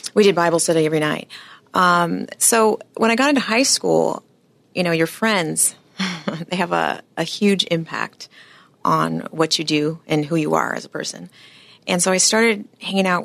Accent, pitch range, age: American, 155-210 Hz, 30-49